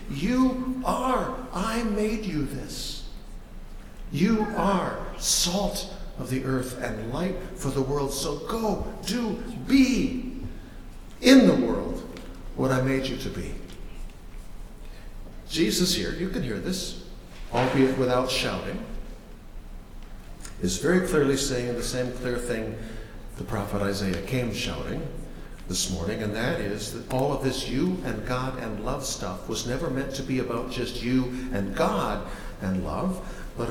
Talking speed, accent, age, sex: 140 wpm, American, 60-79, male